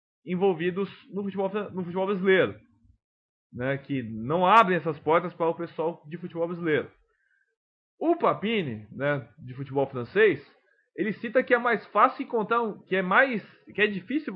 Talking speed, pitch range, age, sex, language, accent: 140 wpm, 160-210 Hz, 20-39, male, English, Brazilian